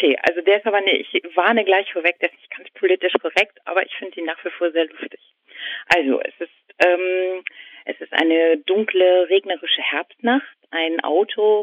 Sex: female